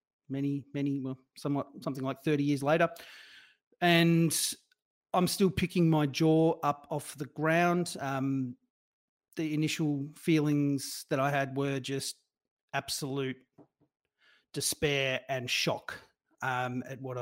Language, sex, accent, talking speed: English, male, Australian, 120 wpm